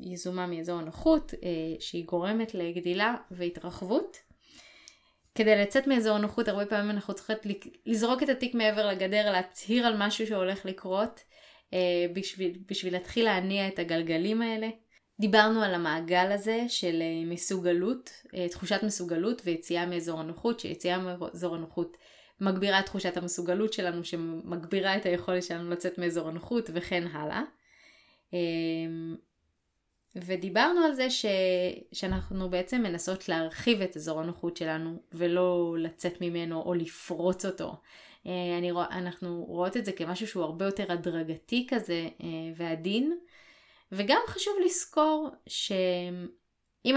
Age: 20-39